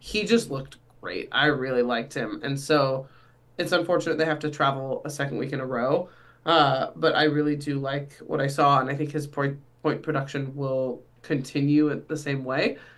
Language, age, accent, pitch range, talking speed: English, 20-39, American, 130-155 Hz, 205 wpm